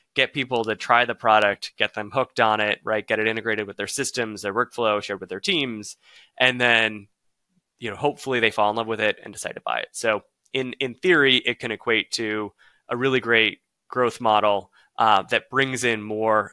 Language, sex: English, male